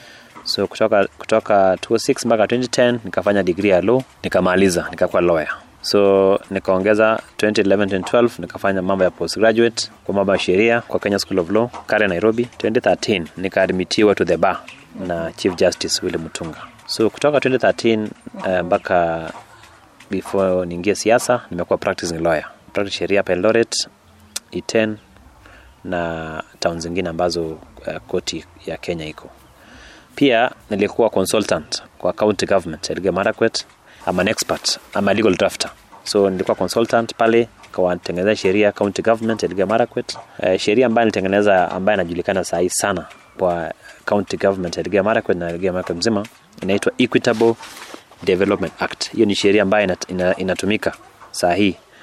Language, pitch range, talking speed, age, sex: Swahili, 90-115 Hz, 135 wpm, 30-49, male